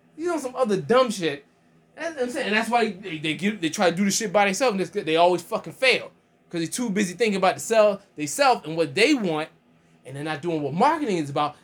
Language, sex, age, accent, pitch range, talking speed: English, male, 20-39, American, 160-235 Hz, 260 wpm